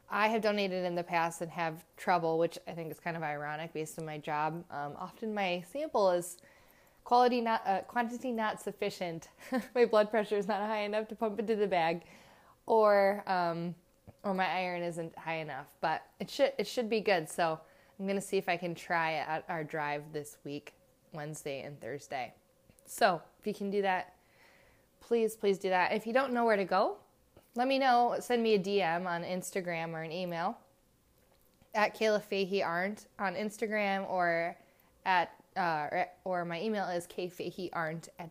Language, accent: English, American